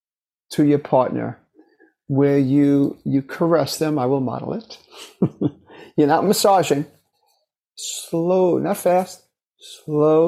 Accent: American